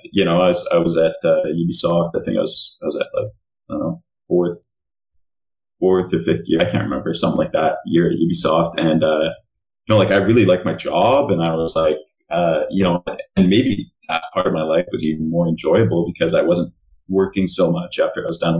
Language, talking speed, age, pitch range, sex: English, 230 wpm, 30-49, 80-95 Hz, male